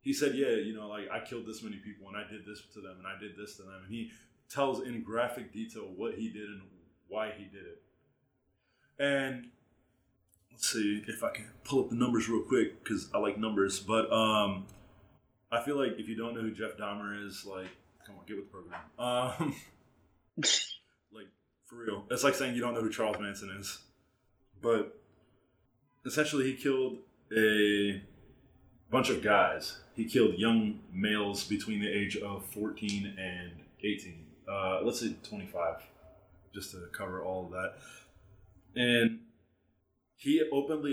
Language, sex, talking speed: English, male, 175 wpm